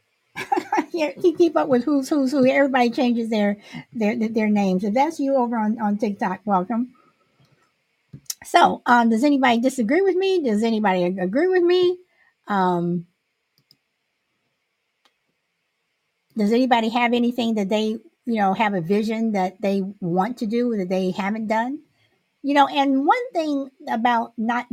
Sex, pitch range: female, 195-275 Hz